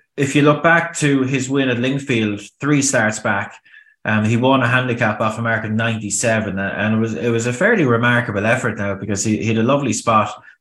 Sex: male